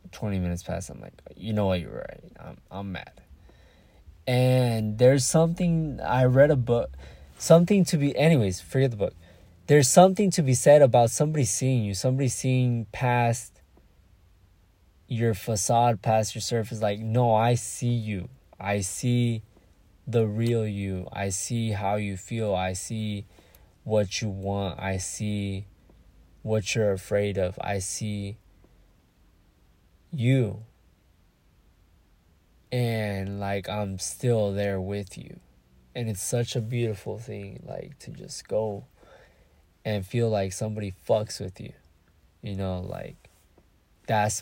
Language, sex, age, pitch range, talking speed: English, male, 20-39, 90-115 Hz, 135 wpm